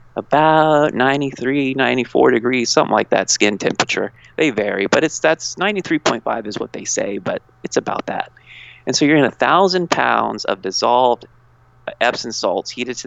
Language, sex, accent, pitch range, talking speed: English, male, American, 105-125 Hz, 165 wpm